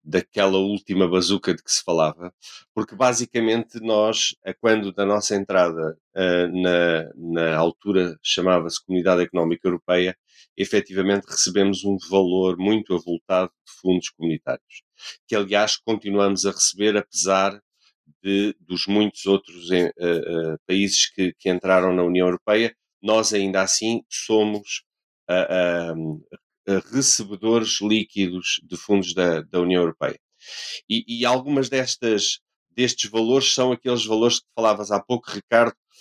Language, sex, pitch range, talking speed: Portuguese, male, 90-110 Hz, 130 wpm